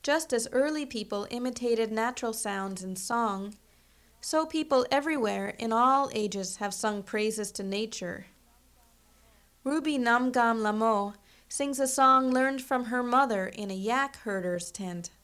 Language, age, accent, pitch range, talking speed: English, 30-49, American, 205-250 Hz, 140 wpm